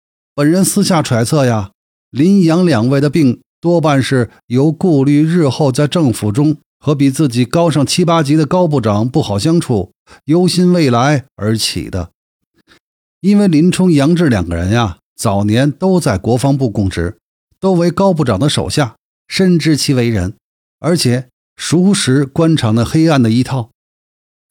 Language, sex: Chinese, male